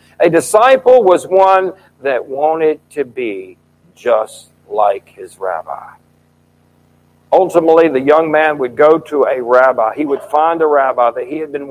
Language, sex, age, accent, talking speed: English, male, 60-79, American, 155 wpm